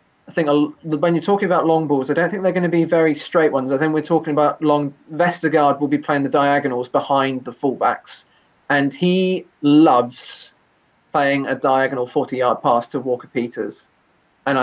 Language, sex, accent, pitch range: English, male, British, 130-165 Hz